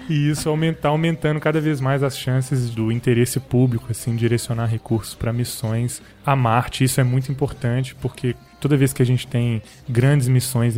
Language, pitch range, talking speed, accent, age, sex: Portuguese, 115-140 Hz, 180 wpm, Brazilian, 20-39, male